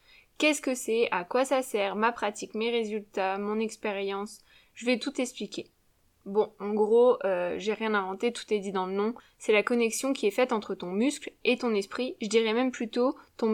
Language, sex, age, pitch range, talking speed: French, female, 10-29, 205-250 Hz, 210 wpm